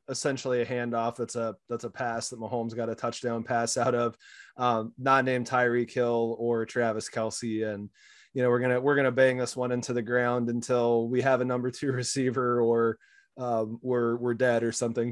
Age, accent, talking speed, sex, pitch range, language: 20-39, American, 200 wpm, male, 120-135 Hz, English